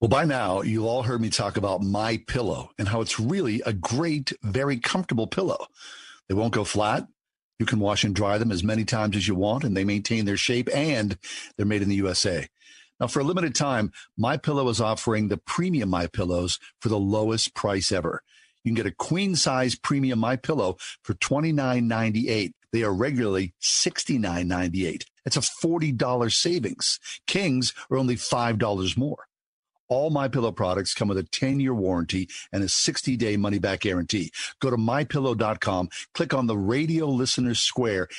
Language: English